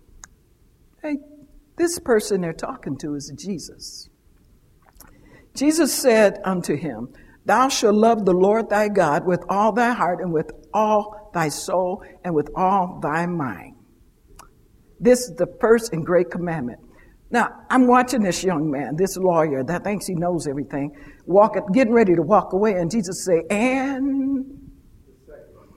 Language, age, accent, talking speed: English, 60-79, American, 145 wpm